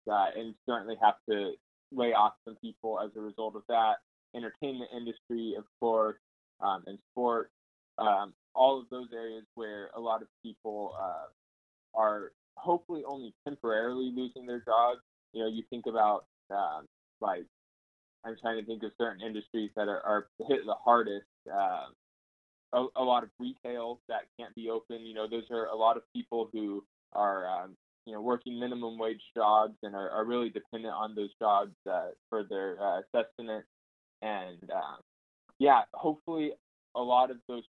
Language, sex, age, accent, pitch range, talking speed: English, male, 20-39, American, 110-120 Hz, 170 wpm